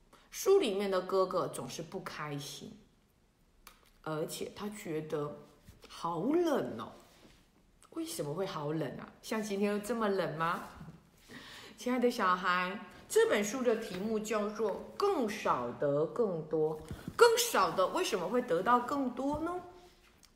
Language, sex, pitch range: Chinese, female, 185-275 Hz